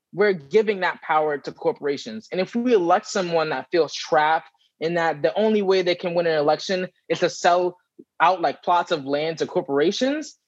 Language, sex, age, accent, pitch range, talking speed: English, male, 20-39, American, 160-210 Hz, 195 wpm